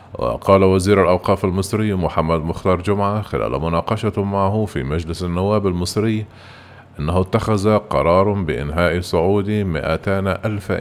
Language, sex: Arabic, male